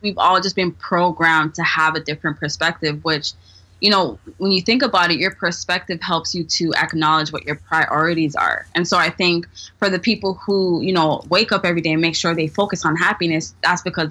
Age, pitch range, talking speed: 20-39, 150-175 Hz, 215 wpm